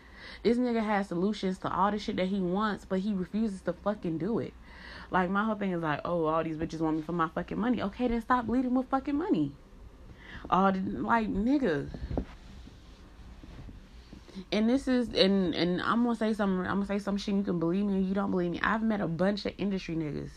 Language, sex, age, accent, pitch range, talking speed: English, female, 20-39, American, 165-210 Hz, 220 wpm